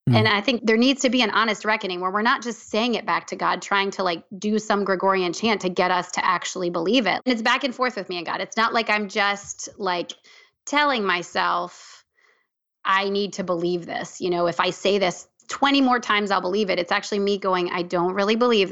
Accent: American